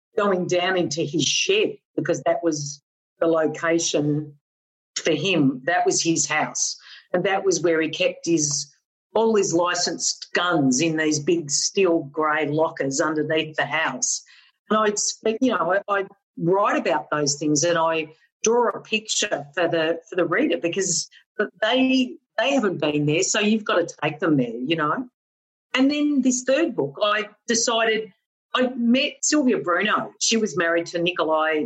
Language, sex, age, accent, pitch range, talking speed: English, female, 50-69, Australian, 160-245 Hz, 165 wpm